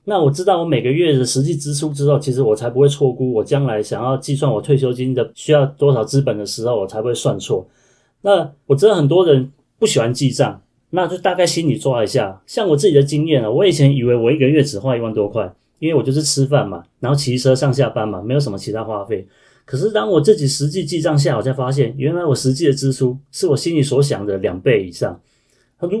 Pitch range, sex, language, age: 130-155 Hz, male, Chinese, 30-49